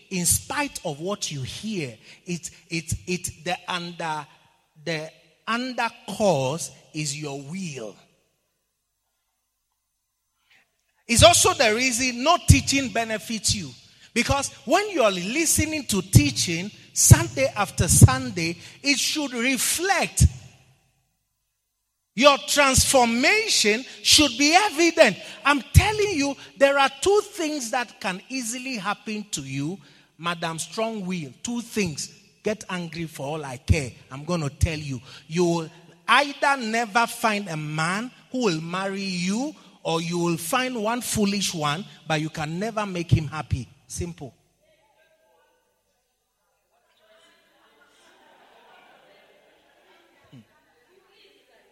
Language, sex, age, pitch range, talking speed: English, male, 40-59, 155-255 Hz, 115 wpm